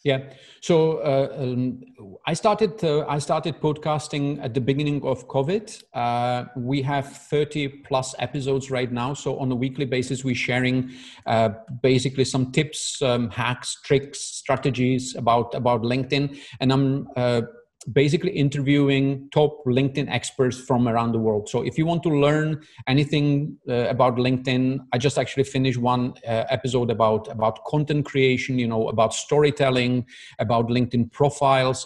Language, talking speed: English, 155 wpm